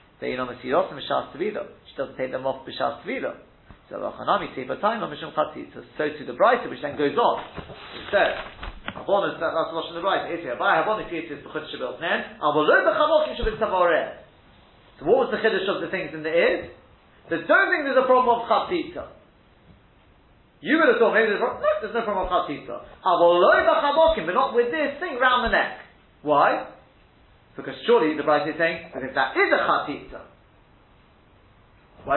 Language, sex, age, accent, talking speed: English, male, 40-59, British, 130 wpm